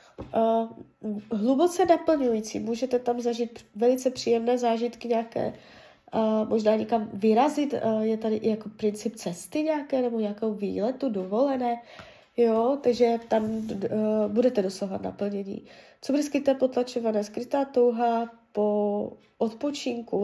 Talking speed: 120 wpm